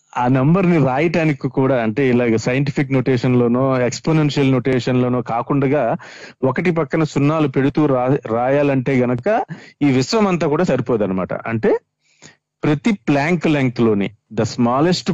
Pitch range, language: 115-155 Hz, Telugu